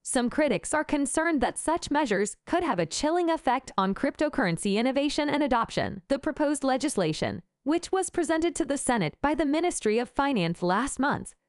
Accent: American